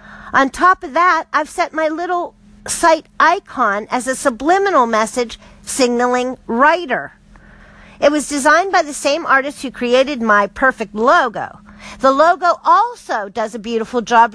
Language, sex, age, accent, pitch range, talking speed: English, female, 50-69, American, 225-320 Hz, 145 wpm